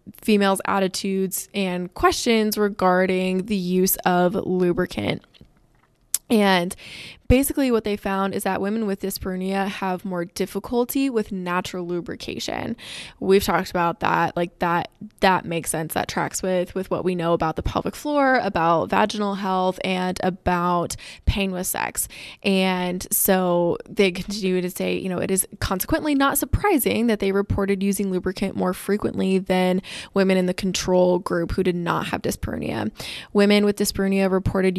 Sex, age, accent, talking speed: female, 20-39, American, 150 wpm